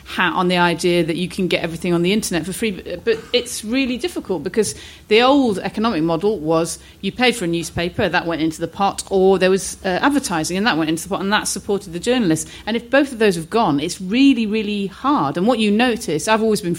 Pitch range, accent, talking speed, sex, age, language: 170-220 Hz, British, 245 wpm, female, 40-59, English